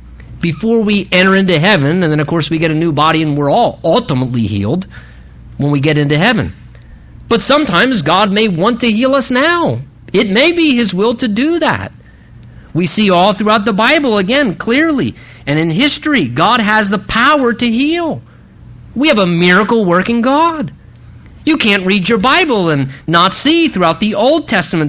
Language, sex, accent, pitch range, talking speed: English, male, American, 155-250 Hz, 185 wpm